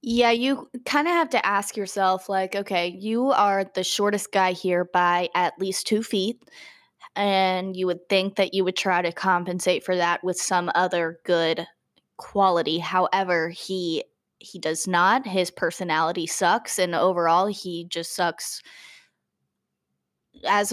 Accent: American